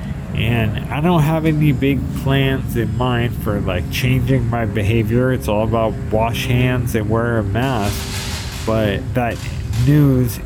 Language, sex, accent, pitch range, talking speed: English, male, American, 105-120 Hz, 150 wpm